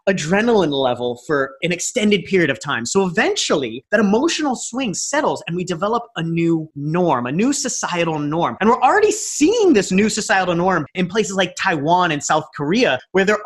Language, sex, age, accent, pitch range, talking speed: English, male, 30-49, American, 155-215 Hz, 185 wpm